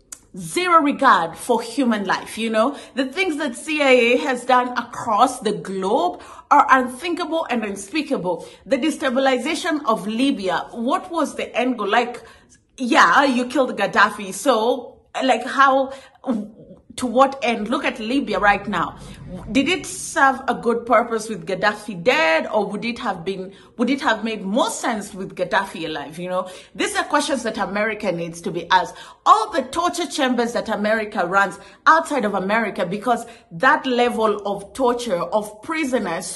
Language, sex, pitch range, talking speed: English, female, 210-270 Hz, 160 wpm